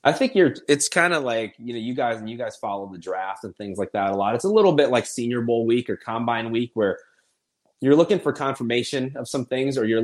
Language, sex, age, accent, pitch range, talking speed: English, male, 30-49, American, 105-125 Hz, 265 wpm